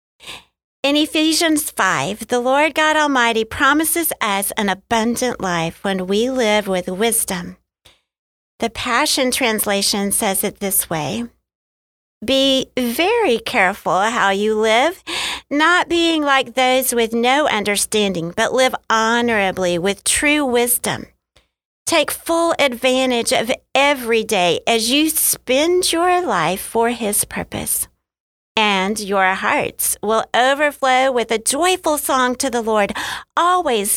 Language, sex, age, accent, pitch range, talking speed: English, female, 50-69, American, 200-280 Hz, 125 wpm